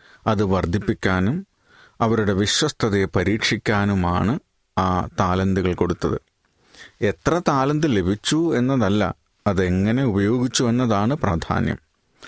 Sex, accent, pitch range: male, native, 90-115 Hz